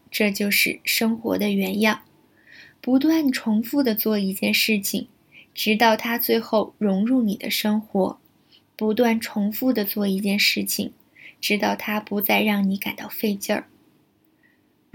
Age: 20-39